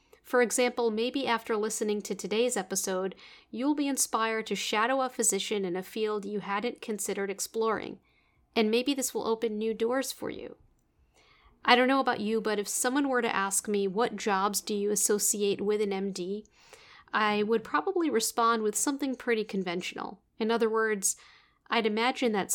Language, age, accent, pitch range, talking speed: English, 40-59, American, 200-245 Hz, 175 wpm